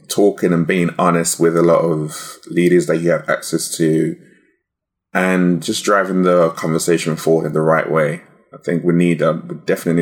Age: 20-39